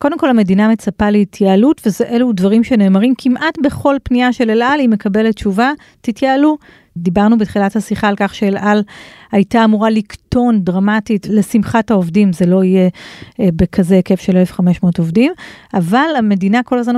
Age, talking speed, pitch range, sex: 30-49, 150 wpm, 195-235 Hz, female